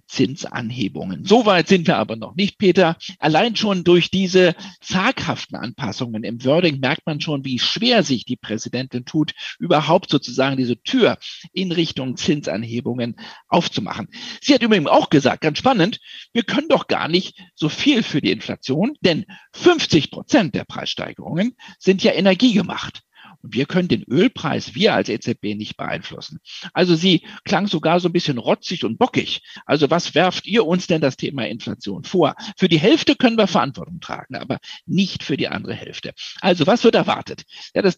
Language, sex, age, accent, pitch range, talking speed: German, male, 50-69, German, 145-205 Hz, 170 wpm